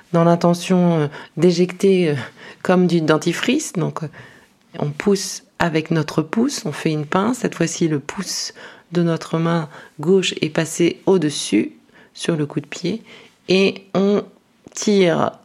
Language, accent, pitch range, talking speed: French, French, 140-180 Hz, 135 wpm